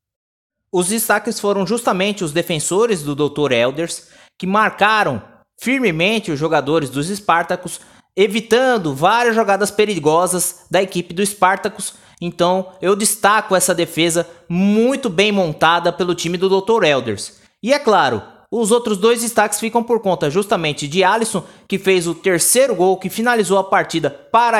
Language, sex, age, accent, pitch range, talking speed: Portuguese, male, 20-39, Brazilian, 175-230 Hz, 145 wpm